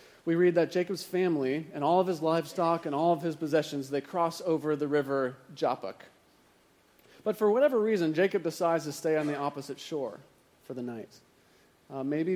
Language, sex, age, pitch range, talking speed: English, male, 30-49, 135-170 Hz, 185 wpm